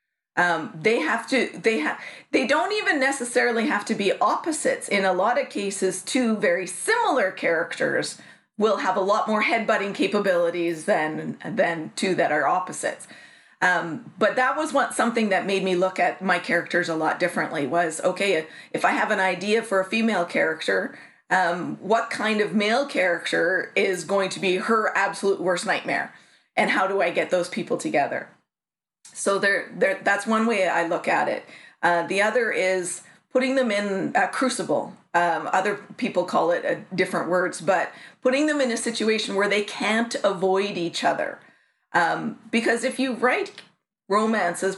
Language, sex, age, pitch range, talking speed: English, female, 30-49, 185-225 Hz, 175 wpm